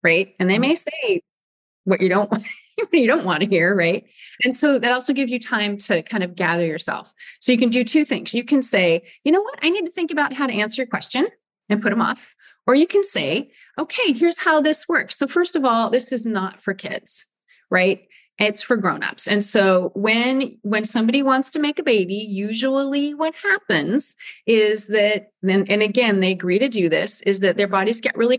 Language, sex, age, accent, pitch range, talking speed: English, female, 30-49, American, 195-265 Hz, 220 wpm